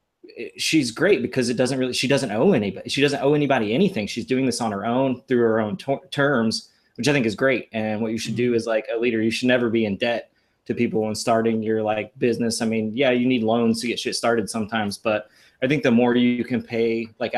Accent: American